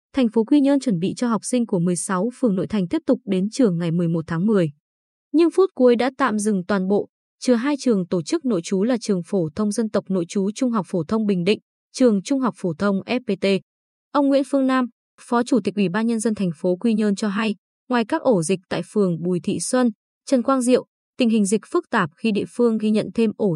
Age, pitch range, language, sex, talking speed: 20-39, 190-250 Hz, Vietnamese, female, 250 wpm